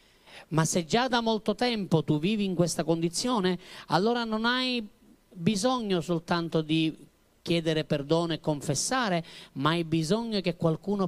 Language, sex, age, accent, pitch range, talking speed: Italian, male, 40-59, native, 170-240 Hz, 140 wpm